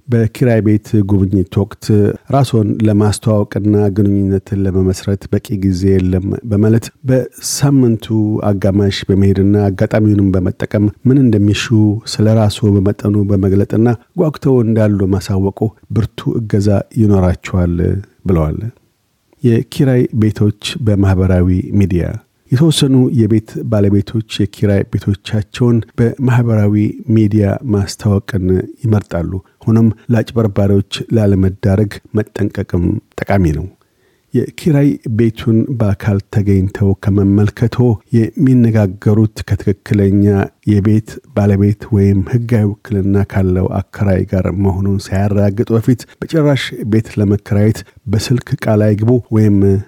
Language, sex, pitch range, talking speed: Amharic, male, 100-115 Hz, 85 wpm